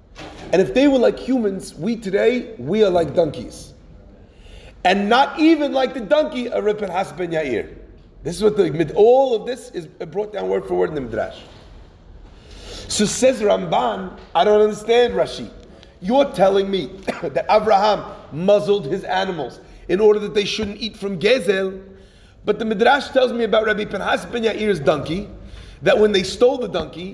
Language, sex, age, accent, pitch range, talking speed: English, male, 30-49, American, 200-260 Hz, 170 wpm